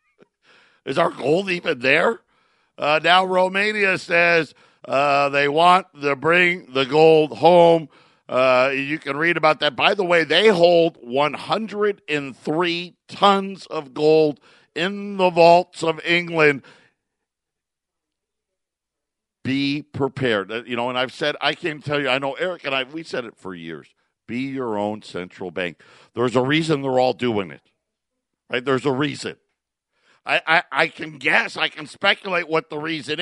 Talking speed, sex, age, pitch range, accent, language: 155 wpm, male, 50-69, 135-200 Hz, American, English